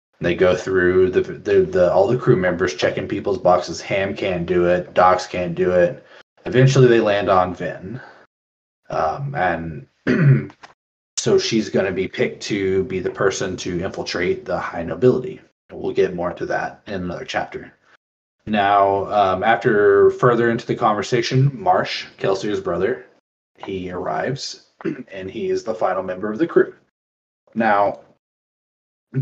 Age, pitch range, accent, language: 20-39, 90-130 Hz, American, English